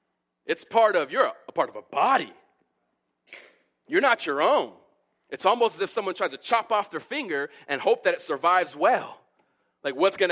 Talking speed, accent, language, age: 200 wpm, American, English, 30-49